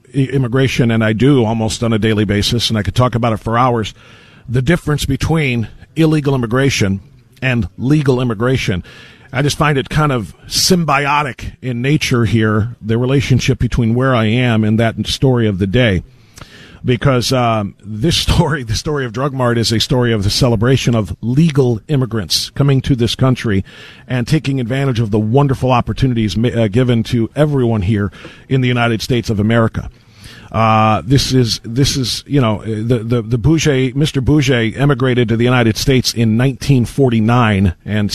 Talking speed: 170 wpm